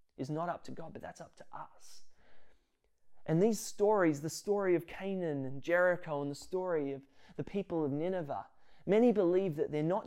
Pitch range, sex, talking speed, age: 140-175 Hz, male, 190 wpm, 20-39